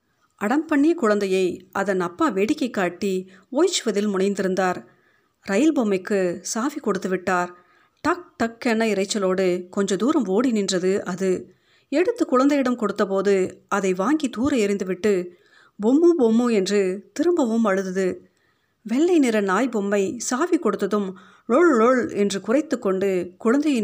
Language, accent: Tamil, native